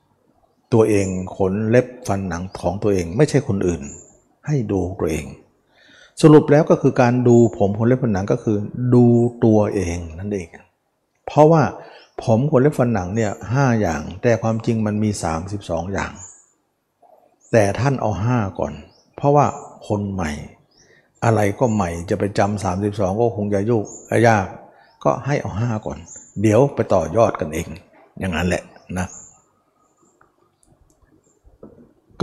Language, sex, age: Thai, male, 60-79